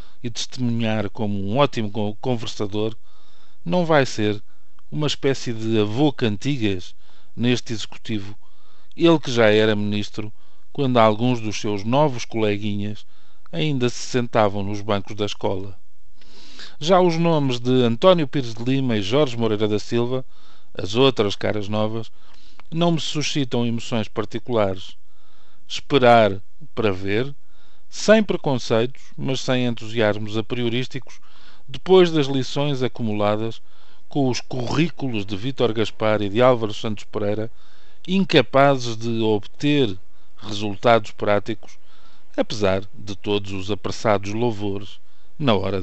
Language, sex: Portuguese, male